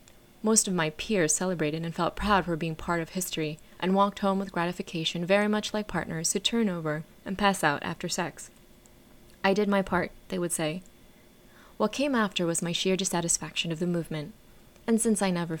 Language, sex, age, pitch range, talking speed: English, female, 20-39, 160-195 Hz, 195 wpm